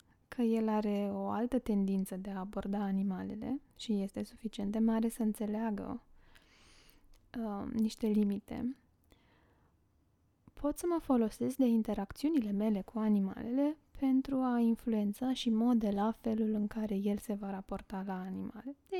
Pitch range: 200-230 Hz